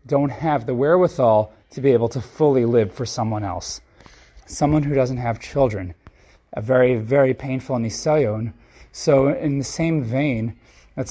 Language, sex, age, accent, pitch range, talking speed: English, male, 30-49, American, 115-150 Hz, 155 wpm